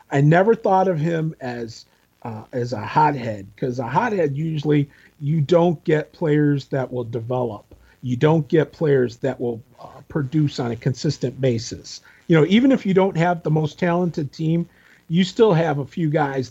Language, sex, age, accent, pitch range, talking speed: English, male, 40-59, American, 125-160 Hz, 180 wpm